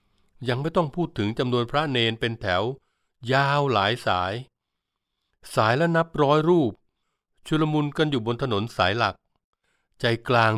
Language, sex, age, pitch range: Thai, male, 60-79, 100-130 Hz